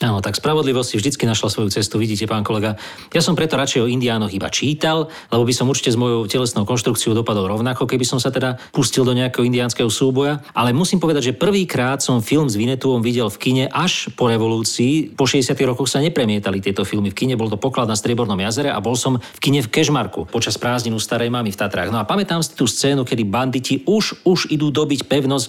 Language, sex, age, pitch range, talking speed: Slovak, male, 40-59, 120-145 Hz, 225 wpm